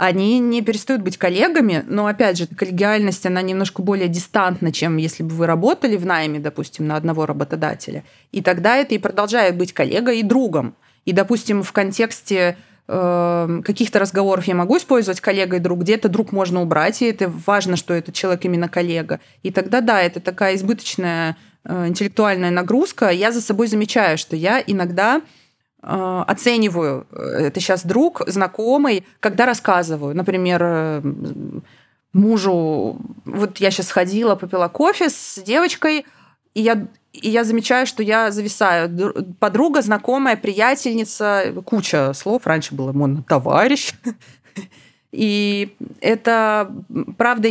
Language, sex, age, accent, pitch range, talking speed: Russian, female, 20-39, native, 180-230 Hz, 135 wpm